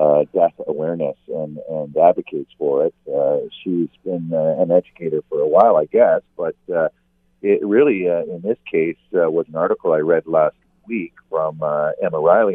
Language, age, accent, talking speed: English, 50-69, American, 185 wpm